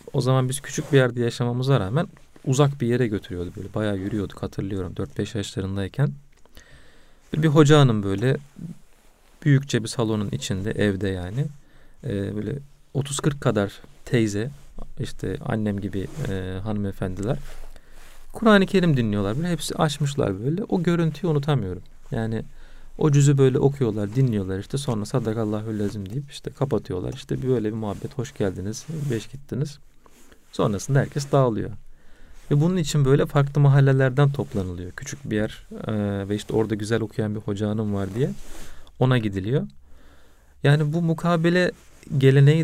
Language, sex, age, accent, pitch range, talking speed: Turkish, male, 40-59, native, 105-145 Hz, 140 wpm